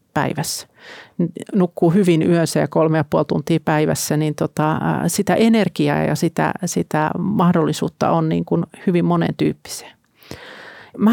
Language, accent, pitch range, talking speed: Finnish, native, 160-200 Hz, 125 wpm